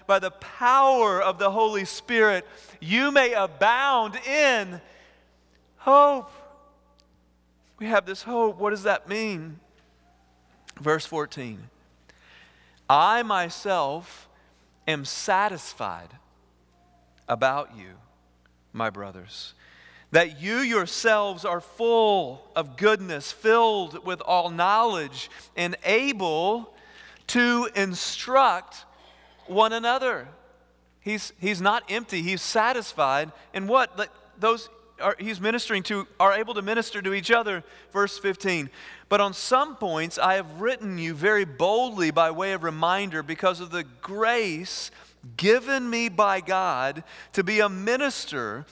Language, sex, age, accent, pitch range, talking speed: English, male, 40-59, American, 165-225 Hz, 115 wpm